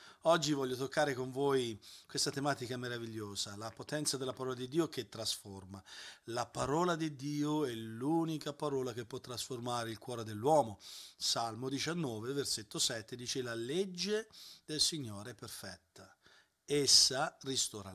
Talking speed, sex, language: 140 wpm, male, Italian